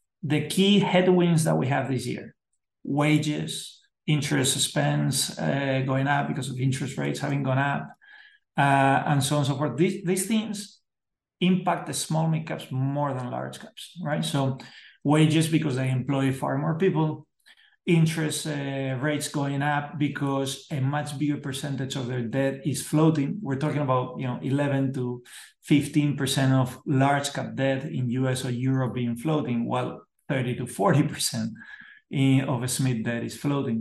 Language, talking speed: English, 165 wpm